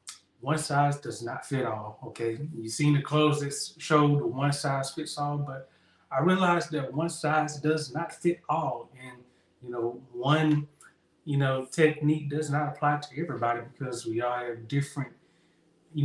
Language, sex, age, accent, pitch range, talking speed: English, male, 30-49, American, 125-150 Hz, 170 wpm